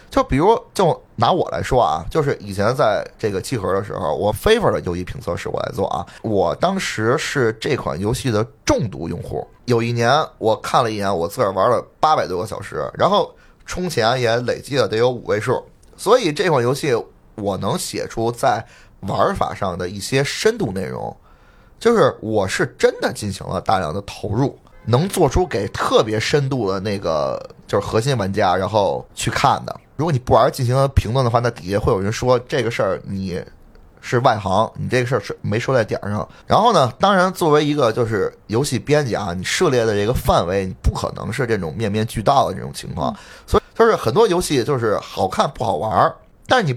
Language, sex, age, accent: Chinese, male, 20-39, native